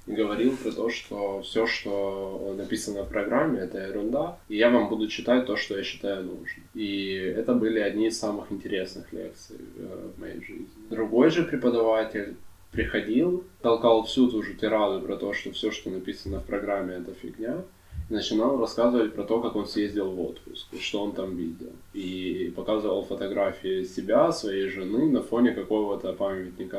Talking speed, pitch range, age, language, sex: 170 wpm, 100-115 Hz, 10-29, Ukrainian, male